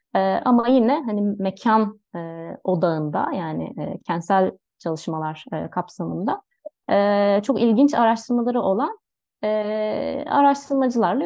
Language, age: Turkish, 30-49